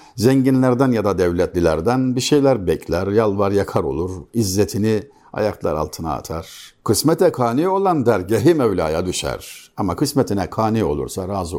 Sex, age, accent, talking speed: male, 60-79, native, 135 wpm